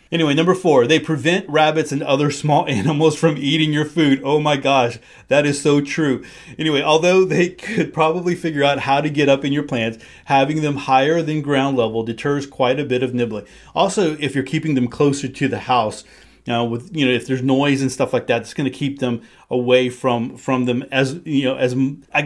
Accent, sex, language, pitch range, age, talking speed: American, male, English, 125-150 Hz, 30-49, 220 wpm